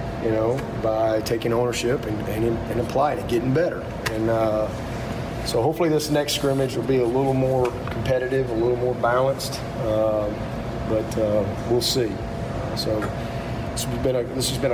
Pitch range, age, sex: 110-120 Hz, 40-59, male